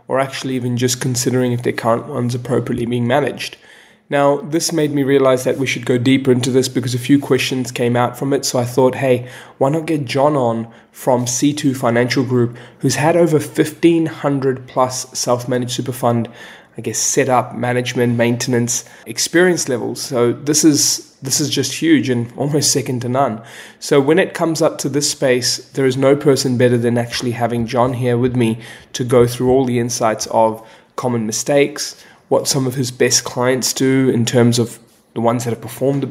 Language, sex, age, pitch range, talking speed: English, male, 20-39, 120-140 Hz, 195 wpm